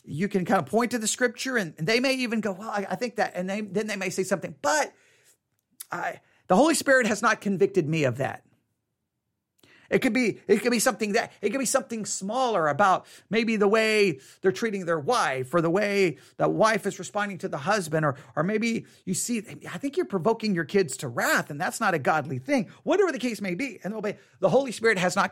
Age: 40-59